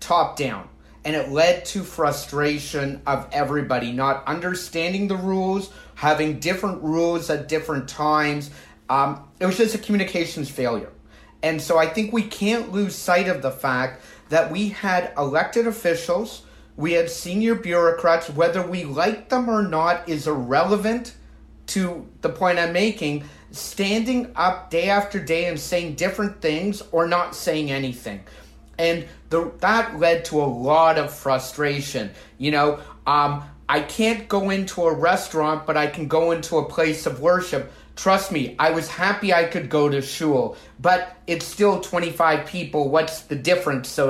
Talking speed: 160 wpm